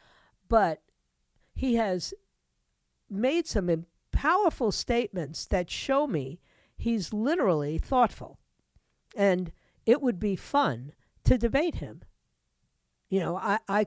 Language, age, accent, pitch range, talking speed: English, 50-69, American, 160-235 Hz, 110 wpm